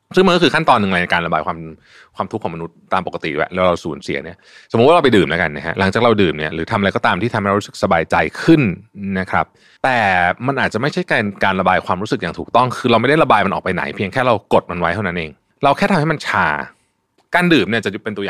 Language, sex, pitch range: Thai, male, 95-120 Hz